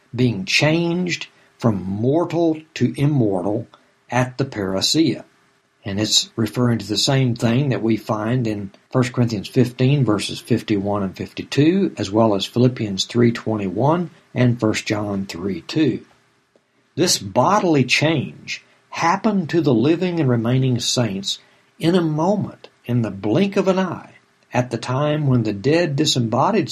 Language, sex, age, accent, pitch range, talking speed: English, male, 60-79, American, 110-145 Hz, 140 wpm